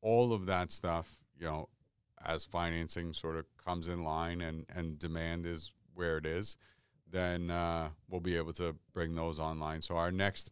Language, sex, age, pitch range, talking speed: English, male, 40-59, 80-90 Hz, 185 wpm